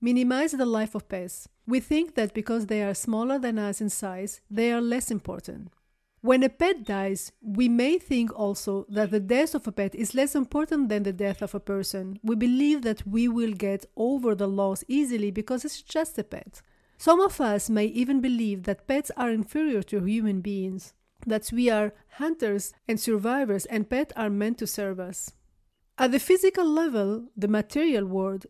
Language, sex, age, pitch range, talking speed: English, female, 40-59, 205-270 Hz, 190 wpm